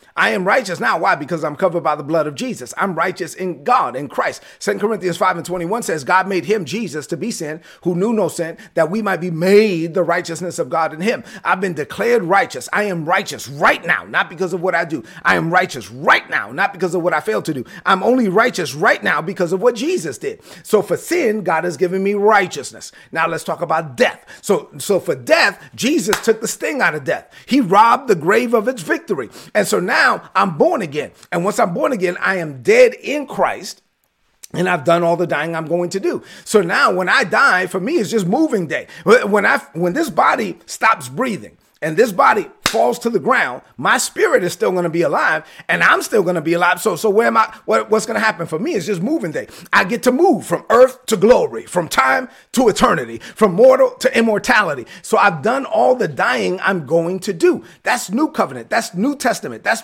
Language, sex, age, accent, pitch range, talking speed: English, male, 30-49, American, 175-235 Hz, 230 wpm